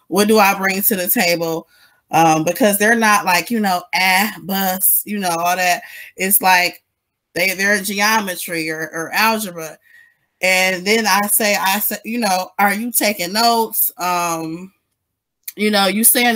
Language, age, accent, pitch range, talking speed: English, 20-39, American, 180-230 Hz, 170 wpm